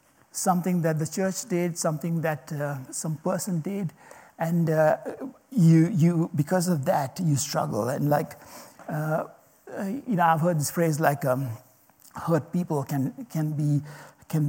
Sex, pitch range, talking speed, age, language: male, 155-195 Hz, 155 wpm, 60-79, English